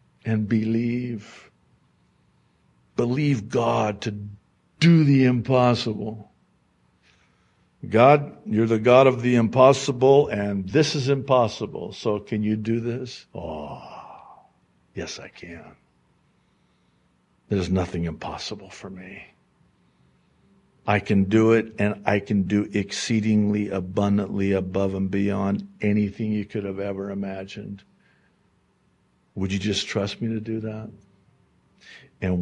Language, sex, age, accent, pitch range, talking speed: English, male, 60-79, American, 95-115 Hz, 115 wpm